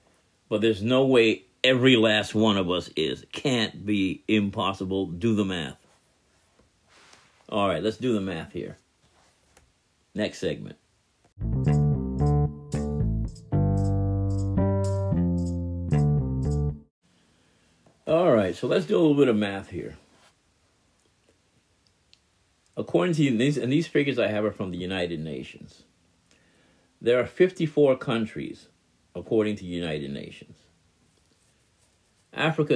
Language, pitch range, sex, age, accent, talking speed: English, 90-115 Hz, male, 50-69, American, 110 wpm